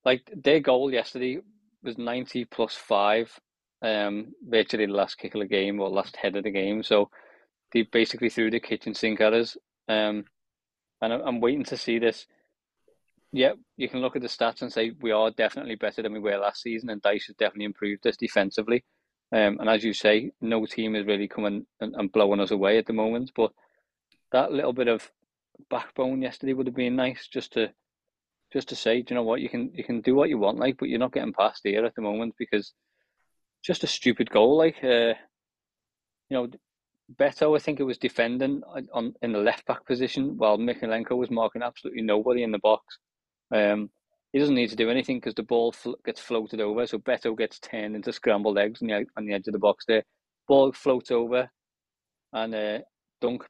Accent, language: British, English